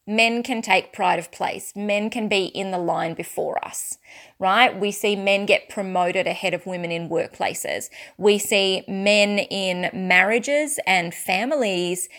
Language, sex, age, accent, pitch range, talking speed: English, female, 20-39, Australian, 180-225 Hz, 160 wpm